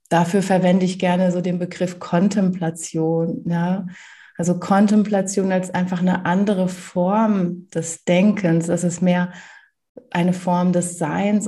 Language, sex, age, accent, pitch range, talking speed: German, female, 30-49, German, 180-200 Hz, 130 wpm